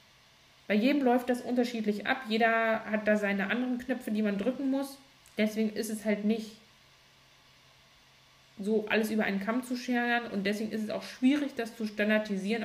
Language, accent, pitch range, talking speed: German, German, 180-220 Hz, 175 wpm